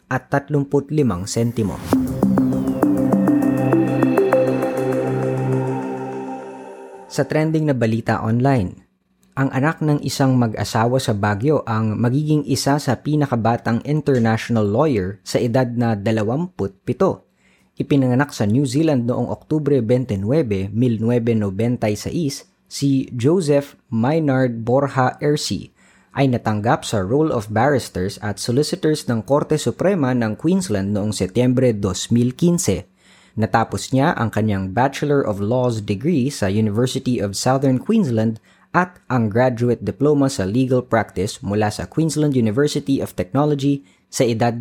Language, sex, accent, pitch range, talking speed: Filipino, female, native, 100-140 Hz, 110 wpm